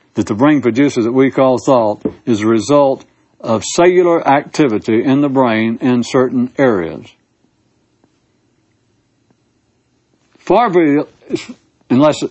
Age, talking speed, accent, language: 60-79, 100 wpm, American, English